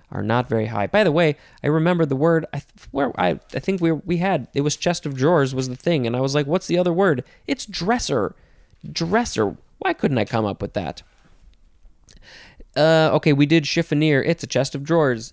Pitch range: 125-165 Hz